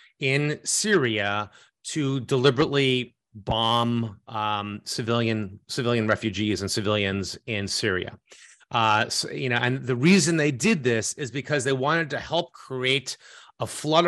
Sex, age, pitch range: male, 30-49, 120-165 Hz